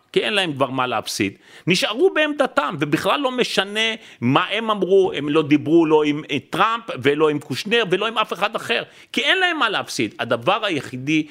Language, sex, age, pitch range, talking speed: Hebrew, male, 40-59, 150-225 Hz, 185 wpm